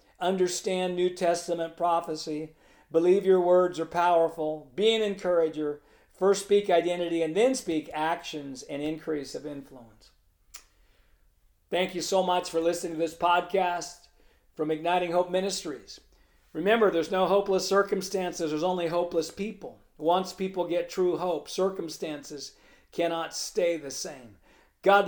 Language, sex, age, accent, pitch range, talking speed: English, male, 50-69, American, 155-185 Hz, 135 wpm